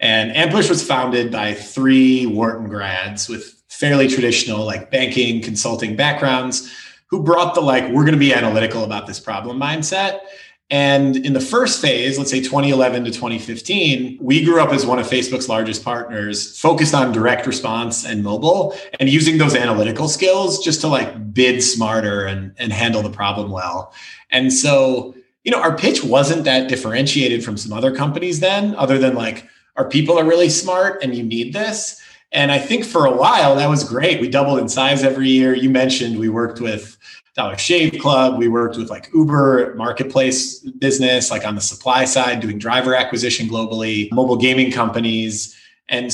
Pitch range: 115-140 Hz